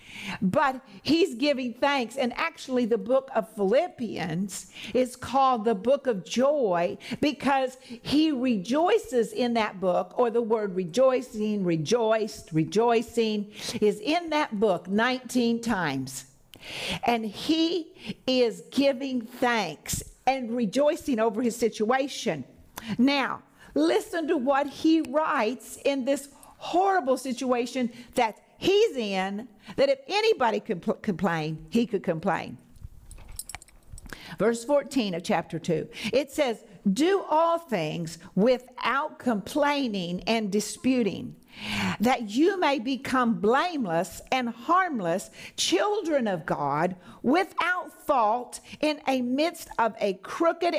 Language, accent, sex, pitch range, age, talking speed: English, American, female, 210-280 Hz, 50-69, 115 wpm